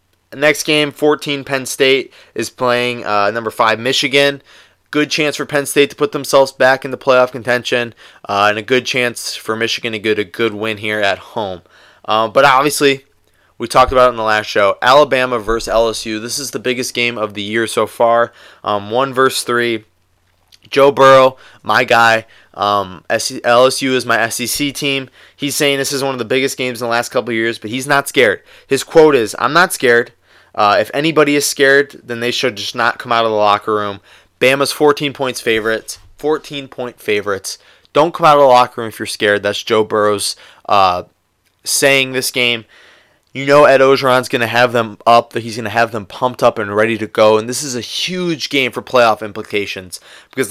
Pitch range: 110-135 Hz